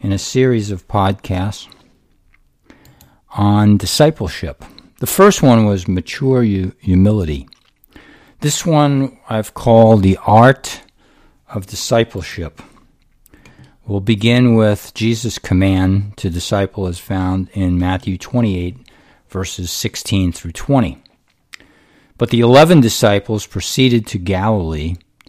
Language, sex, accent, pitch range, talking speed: English, male, American, 95-115 Hz, 105 wpm